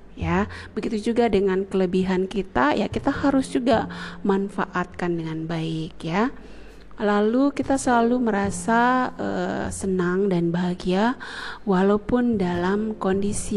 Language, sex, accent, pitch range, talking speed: Indonesian, female, native, 170-205 Hz, 110 wpm